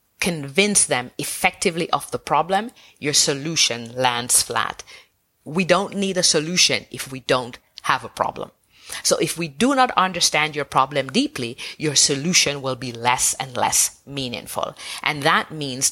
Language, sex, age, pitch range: English, female, 30-49, 135-185 Hz